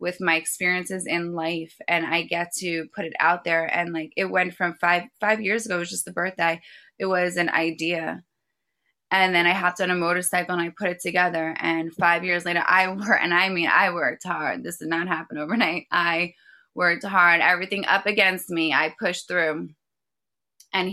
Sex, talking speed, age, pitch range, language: female, 205 wpm, 20-39, 165-190 Hz, English